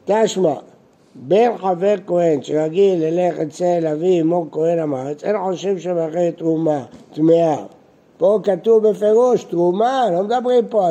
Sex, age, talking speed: male, 60-79, 130 wpm